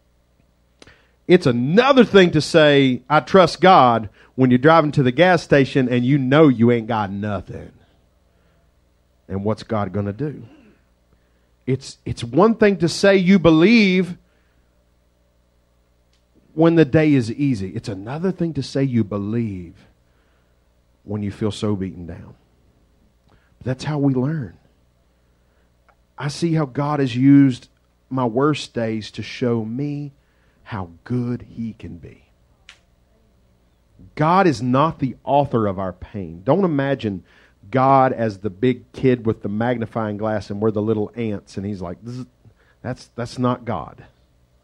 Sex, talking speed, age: male, 140 wpm, 40-59